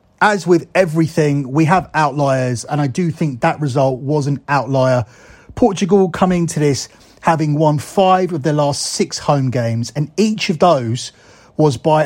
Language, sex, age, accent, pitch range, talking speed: English, male, 30-49, British, 130-160 Hz, 170 wpm